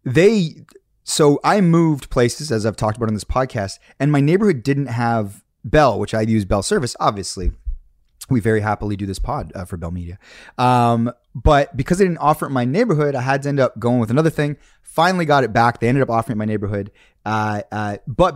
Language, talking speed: English, 220 wpm